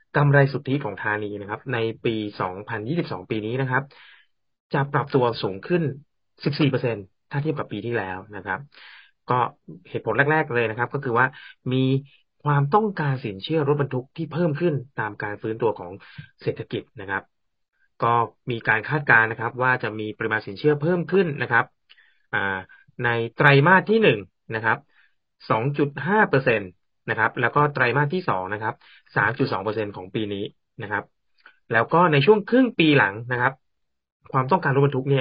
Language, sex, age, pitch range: Thai, male, 20-39, 110-150 Hz